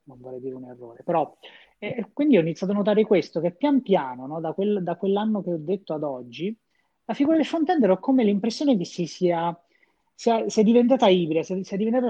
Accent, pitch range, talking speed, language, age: native, 165-225 Hz, 215 wpm, Italian, 30-49